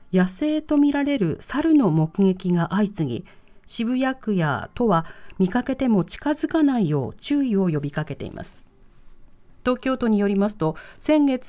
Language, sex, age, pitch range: Japanese, female, 40-59, 180-265 Hz